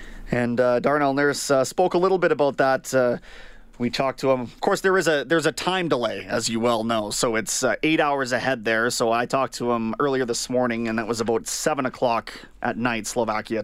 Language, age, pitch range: English, 30-49, 125-160 Hz